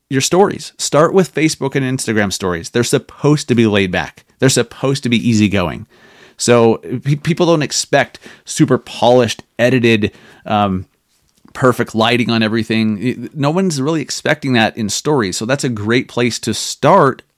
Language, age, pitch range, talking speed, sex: English, 30-49, 110-130 Hz, 155 wpm, male